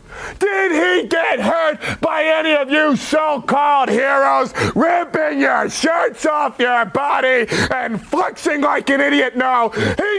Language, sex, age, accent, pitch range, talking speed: English, male, 30-49, American, 235-320 Hz, 135 wpm